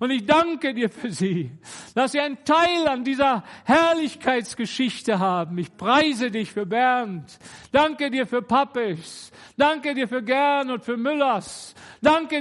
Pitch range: 245-325 Hz